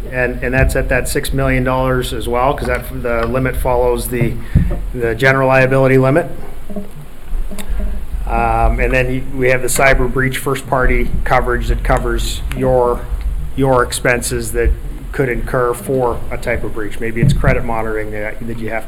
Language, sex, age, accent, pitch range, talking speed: English, male, 30-49, American, 115-135 Hz, 155 wpm